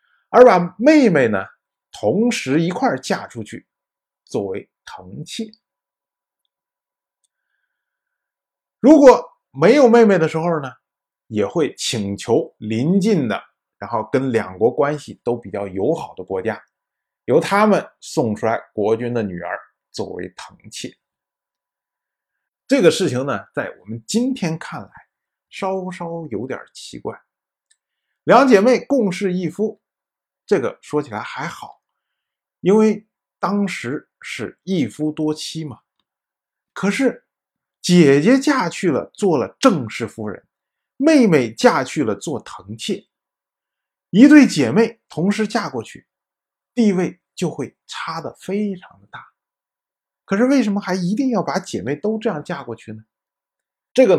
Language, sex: Chinese, male